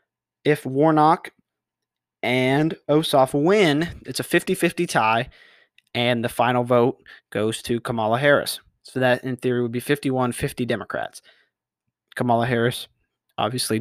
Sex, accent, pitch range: male, American, 120-145 Hz